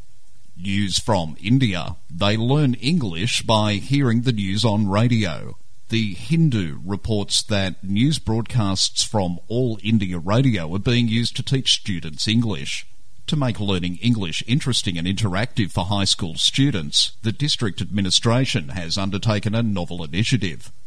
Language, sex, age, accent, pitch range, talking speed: English, male, 50-69, Australian, 100-120 Hz, 140 wpm